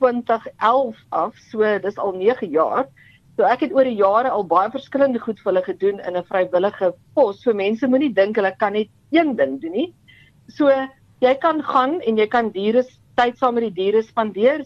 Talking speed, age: 190 wpm, 50-69